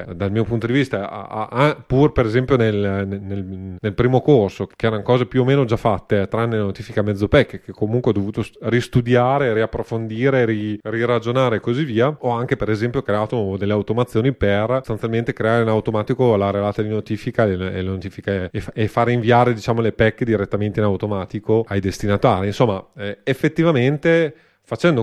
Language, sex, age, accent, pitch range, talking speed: Italian, male, 30-49, native, 105-130 Hz, 165 wpm